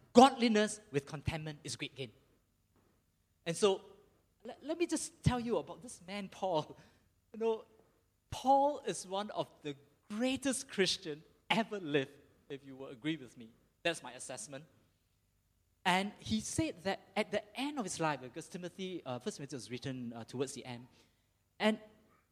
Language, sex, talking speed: English, male, 160 wpm